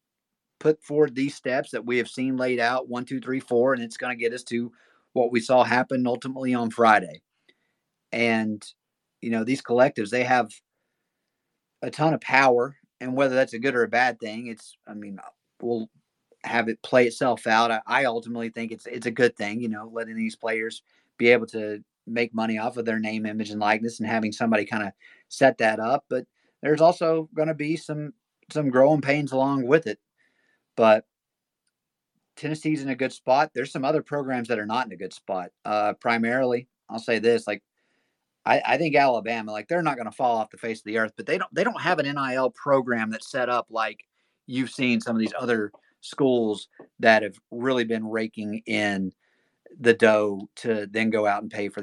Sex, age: male, 30-49